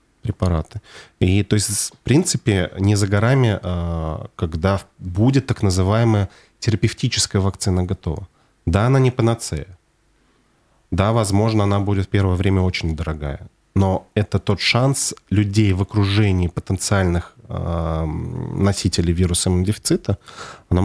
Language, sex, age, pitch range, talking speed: Russian, male, 30-49, 90-110 Hz, 120 wpm